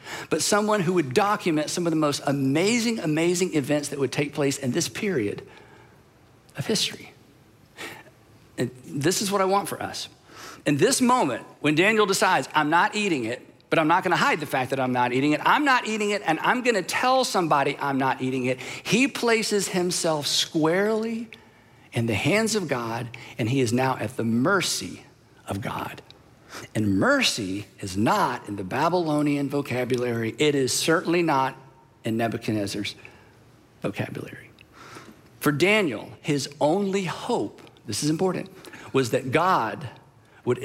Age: 50-69